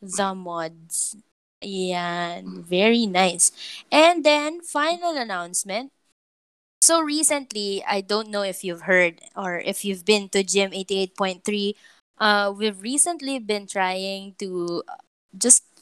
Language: English